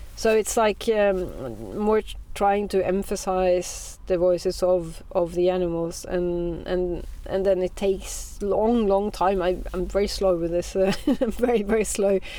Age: 30-49